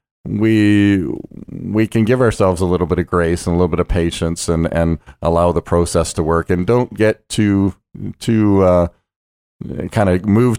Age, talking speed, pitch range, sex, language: 40-59, 180 wpm, 85-100 Hz, male, English